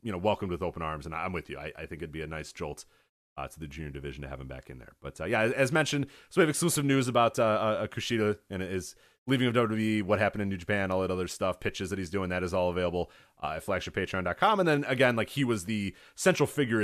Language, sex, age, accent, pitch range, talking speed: English, male, 30-49, American, 90-130 Hz, 280 wpm